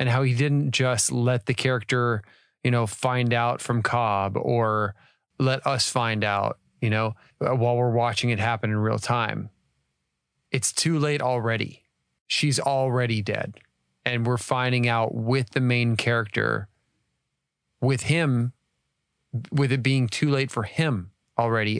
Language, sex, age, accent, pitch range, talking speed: English, male, 30-49, American, 110-130 Hz, 150 wpm